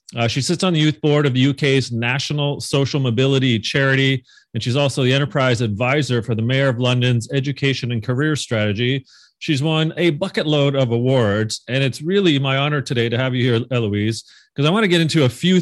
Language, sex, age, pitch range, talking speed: English, male, 40-59, 125-155 Hz, 210 wpm